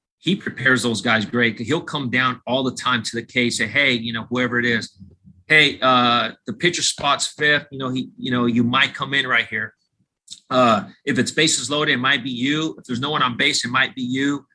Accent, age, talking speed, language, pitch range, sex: American, 30-49, 245 wpm, English, 125-145 Hz, male